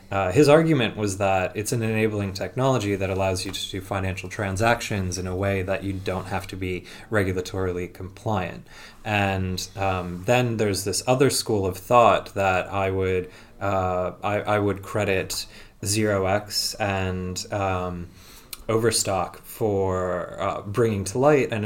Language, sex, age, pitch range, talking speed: English, male, 20-39, 95-110 Hz, 150 wpm